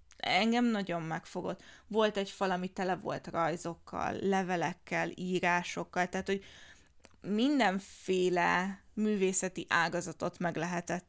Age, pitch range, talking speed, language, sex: 20-39, 170-200 Hz, 105 wpm, Hungarian, female